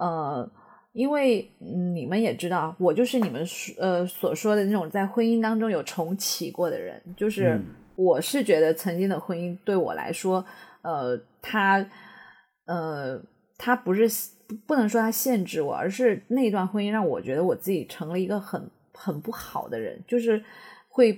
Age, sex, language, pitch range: 30-49, female, Chinese, 180-235 Hz